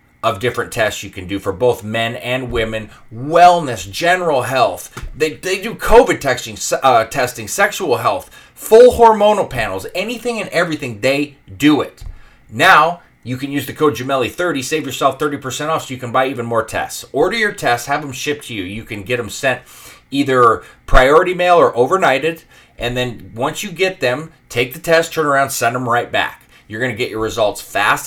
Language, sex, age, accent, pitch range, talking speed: English, male, 30-49, American, 115-155 Hz, 195 wpm